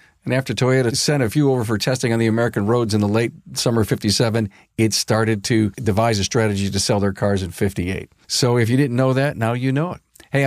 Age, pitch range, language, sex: 50-69, 110-135 Hz, English, male